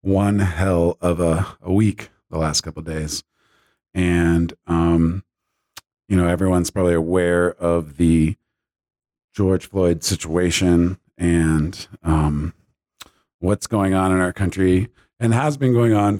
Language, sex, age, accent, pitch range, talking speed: English, male, 40-59, American, 85-110 Hz, 135 wpm